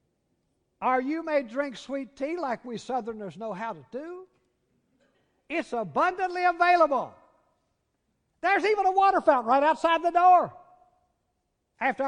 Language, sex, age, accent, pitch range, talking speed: English, male, 60-79, American, 240-355 Hz, 130 wpm